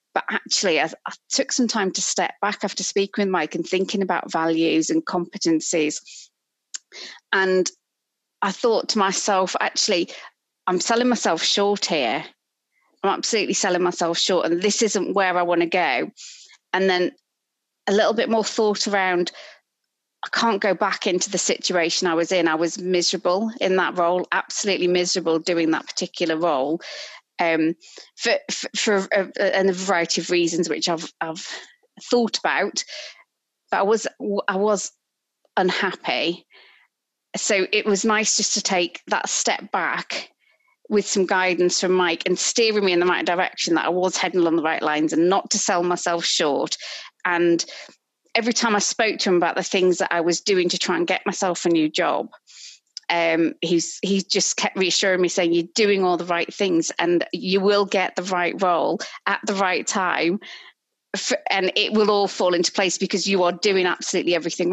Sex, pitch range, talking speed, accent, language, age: female, 175-205 Hz, 175 wpm, British, English, 30-49